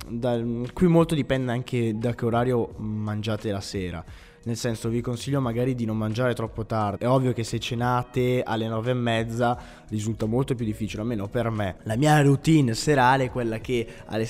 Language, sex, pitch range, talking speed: Italian, male, 105-130 Hz, 190 wpm